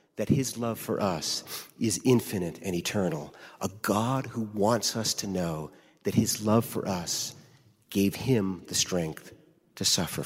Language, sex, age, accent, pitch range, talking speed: English, male, 40-59, American, 105-135 Hz, 160 wpm